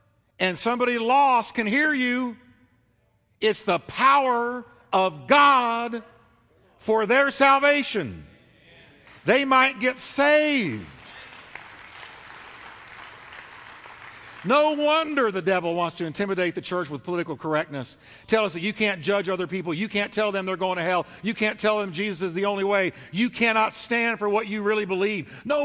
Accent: American